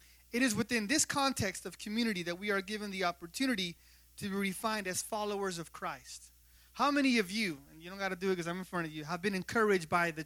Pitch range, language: 160-235 Hz, English